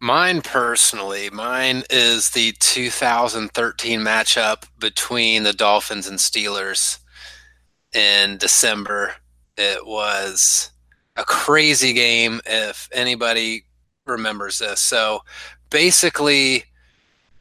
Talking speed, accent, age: 85 wpm, American, 30-49